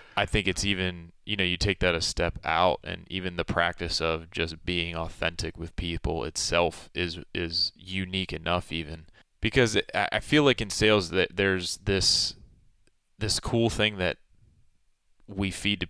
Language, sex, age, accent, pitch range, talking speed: English, male, 20-39, American, 85-95 Hz, 165 wpm